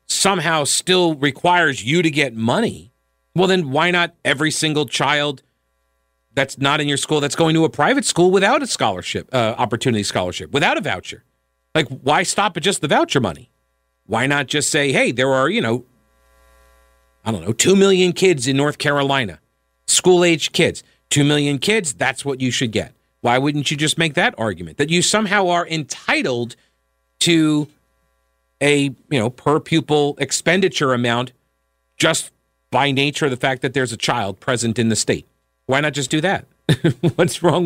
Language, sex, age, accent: English, male, 40-59, American